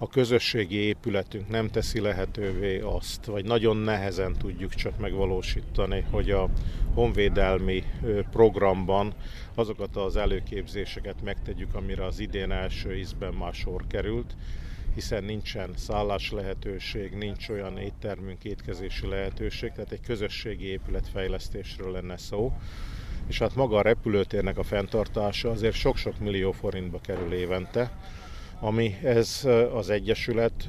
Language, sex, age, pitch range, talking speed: Hungarian, male, 50-69, 95-110 Hz, 120 wpm